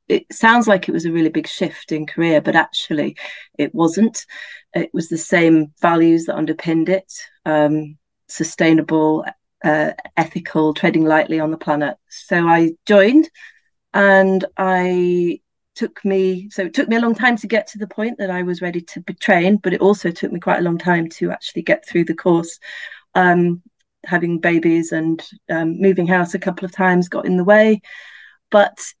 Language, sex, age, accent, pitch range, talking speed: English, female, 30-49, British, 170-210 Hz, 185 wpm